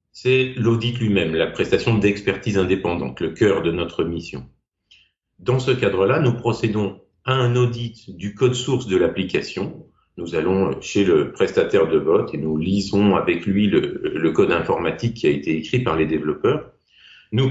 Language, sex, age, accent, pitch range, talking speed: French, male, 50-69, French, 95-125 Hz, 170 wpm